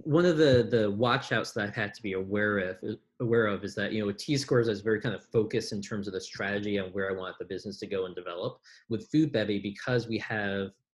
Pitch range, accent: 100-115 Hz, American